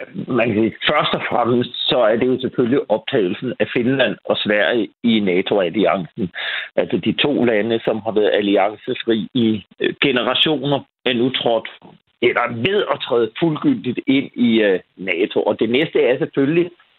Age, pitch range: 50-69, 115-150 Hz